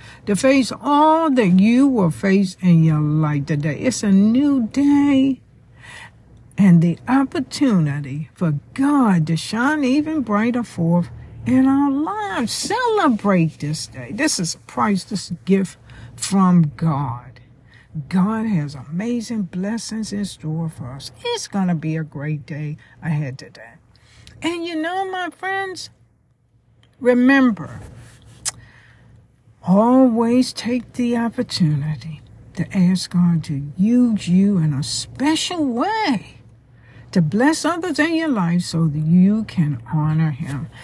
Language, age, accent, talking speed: English, 60-79, American, 130 wpm